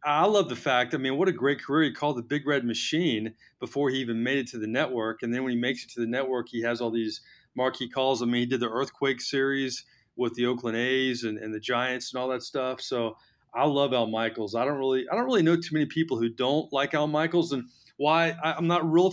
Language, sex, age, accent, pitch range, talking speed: English, male, 30-49, American, 120-150 Hz, 260 wpm